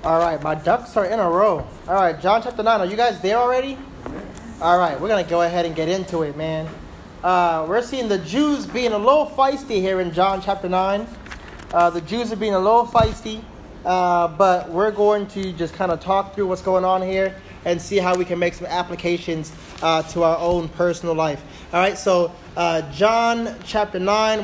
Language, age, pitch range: English, 20-39, 175-215 Hz